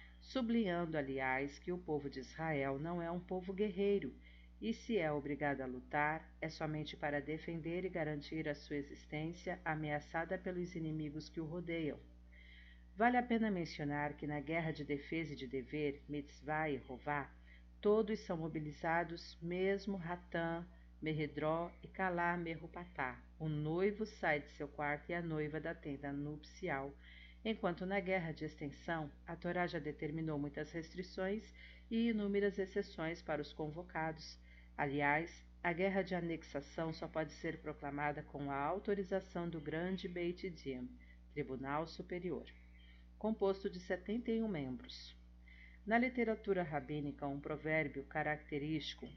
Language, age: Portuguese, 50-69